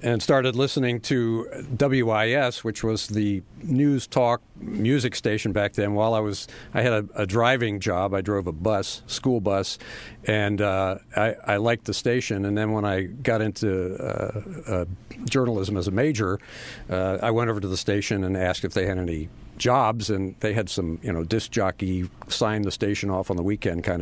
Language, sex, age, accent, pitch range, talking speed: English, male, 50-69, American, 100-120 Hz, 195 wpm